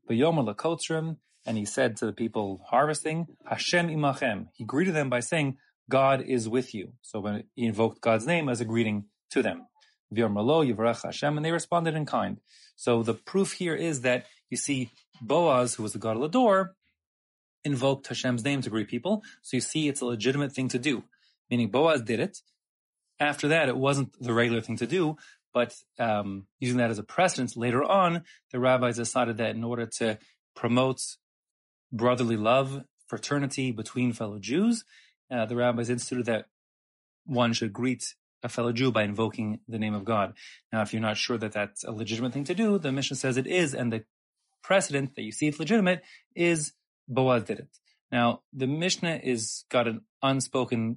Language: English